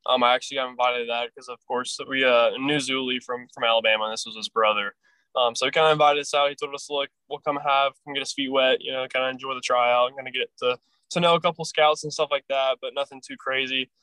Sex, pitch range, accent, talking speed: male, 120-140 Hz, American, 290 wpm